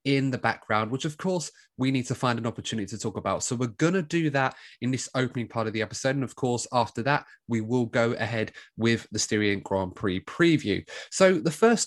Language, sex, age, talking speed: English, male, 20-39, 235 wpm